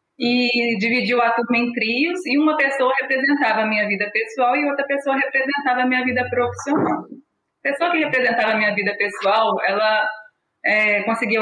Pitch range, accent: 210-255 Hz, Brazilian